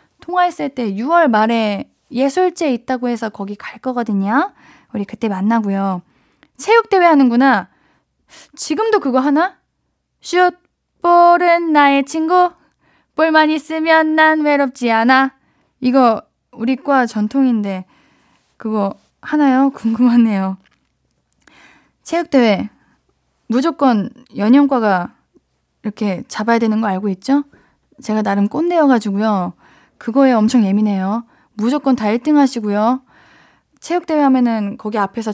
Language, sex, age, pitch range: Korean, female, 20-39, 210-280 Hz